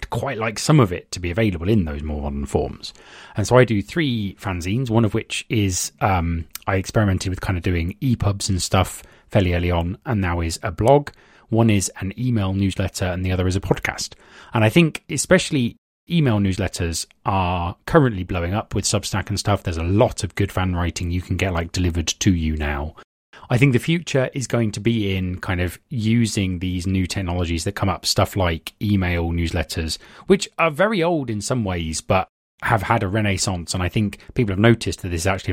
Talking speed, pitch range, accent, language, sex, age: 210 wpm, 85-110 Hz, British, English, male, 30-49